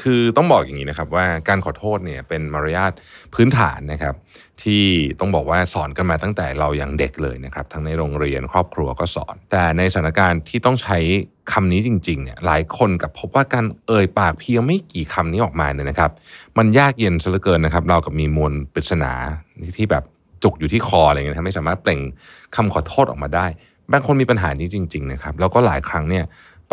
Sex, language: male, Thai